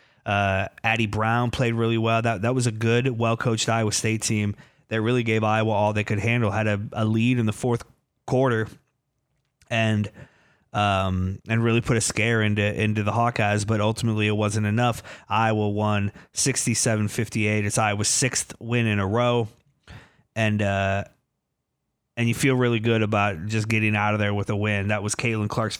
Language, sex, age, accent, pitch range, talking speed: English, male, 20-39, American, 105-120 Hz, 185 wpm